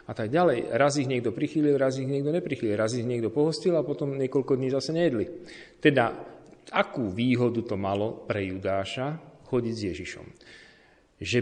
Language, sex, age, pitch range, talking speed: Slovak, male, 40-59, 95-130 Hz, 170 wpm